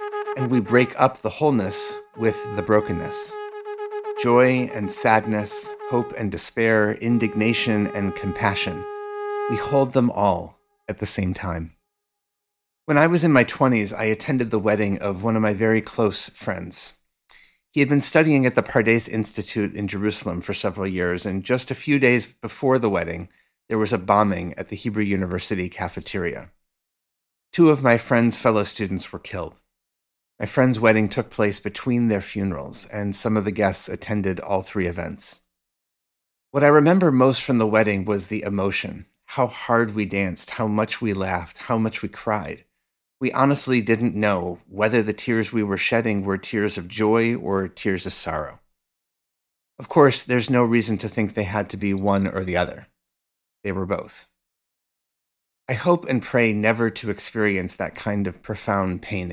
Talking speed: 170 wpm